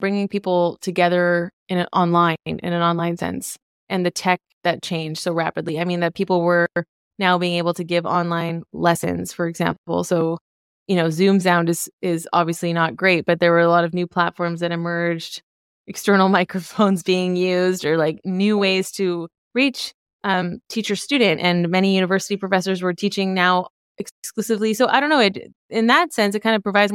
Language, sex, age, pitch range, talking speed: English, female, 20-39, 175-205 Hz, 185 wpm